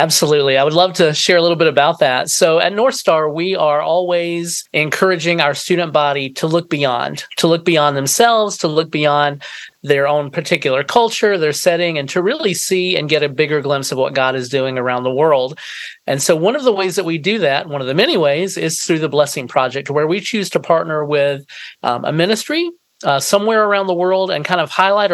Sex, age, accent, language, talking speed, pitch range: male, 40-59, American, English, 220 wpm, 145-180 Hz